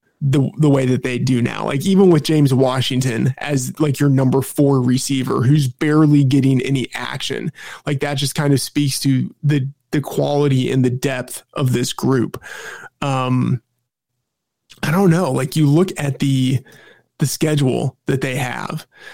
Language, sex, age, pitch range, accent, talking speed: English, male, 20-39, 130-155 Hz, American, 165 wpm